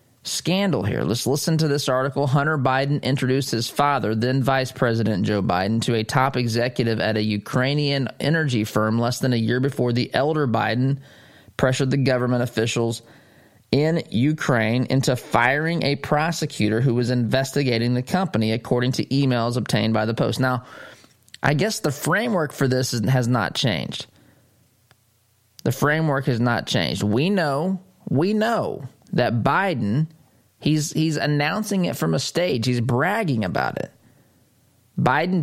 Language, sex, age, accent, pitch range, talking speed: English, male, 20-39, American, 120-145 Hz, 150 wpm